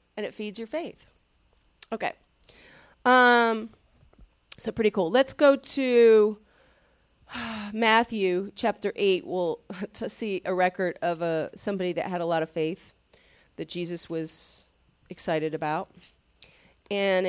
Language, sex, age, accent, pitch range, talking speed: English, female, 30-49, American, 180-255 Hz, 125 wpm